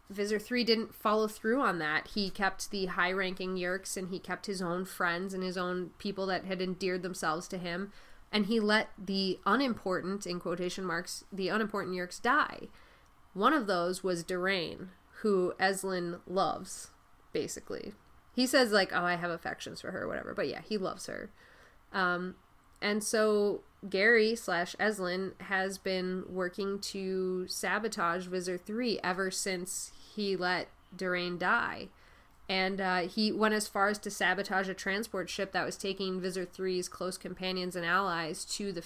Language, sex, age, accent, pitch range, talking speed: English, female, 20-39, American, 180-205 Hz, 165 wpm